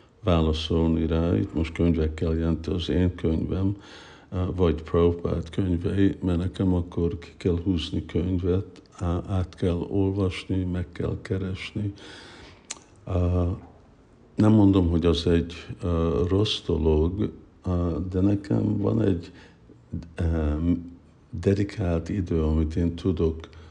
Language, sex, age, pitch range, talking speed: Hungarian, male, 60-79, 85-95 Hz, 105 wpm